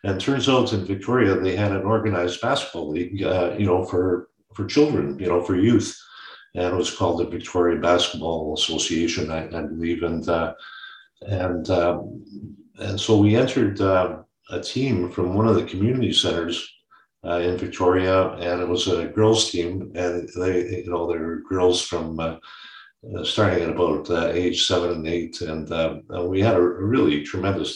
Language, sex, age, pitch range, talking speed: English, male, 50-69, 85-105 Hz, 180 wpm